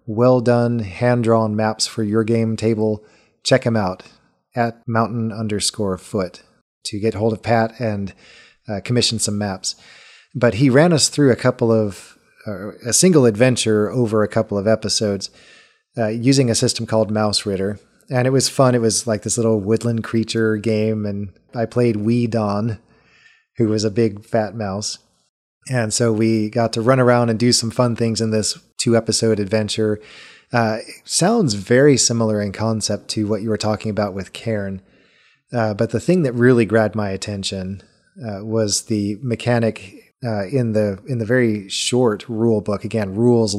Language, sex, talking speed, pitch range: English, male, 175 wpm, 105-120 Hz